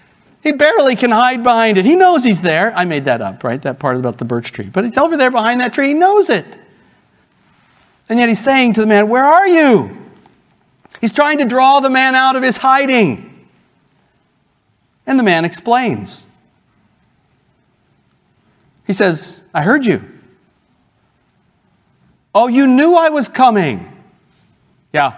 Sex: male